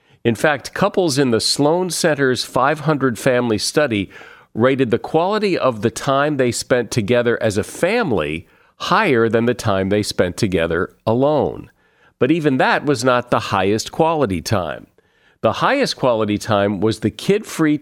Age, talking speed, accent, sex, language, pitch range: 50-69, 155 wpm, American, male, English, 100-130 Hz